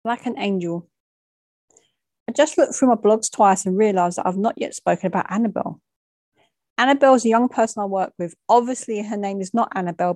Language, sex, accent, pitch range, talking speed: English, female, British, 185-230 Hz, 195 wpm